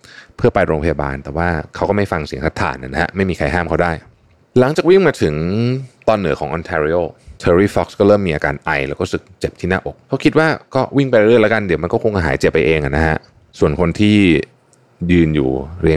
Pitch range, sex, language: 80-105 Hz, male, Thai